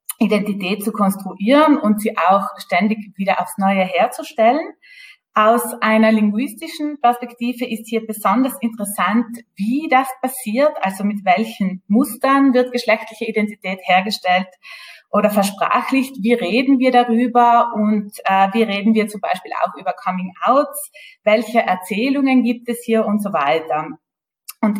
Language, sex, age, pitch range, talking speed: German, female, 20-39, 210-250 Hz, 135 wpm